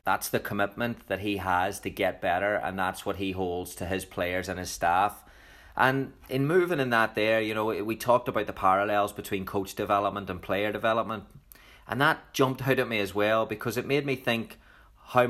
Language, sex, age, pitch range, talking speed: English, male, 30-49, 95-115 Hz, 210 wpm